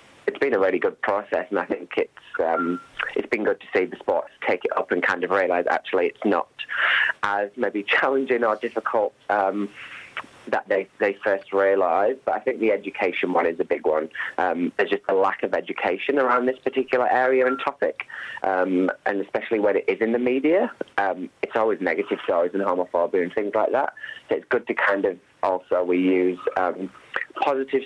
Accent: British